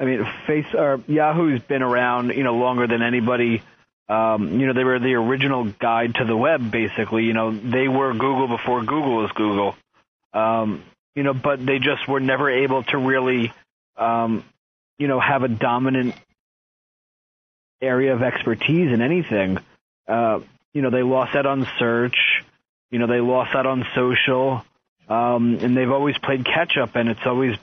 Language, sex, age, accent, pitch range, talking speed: English, male, 30-49, American, 120-135 Hz, 175 wpm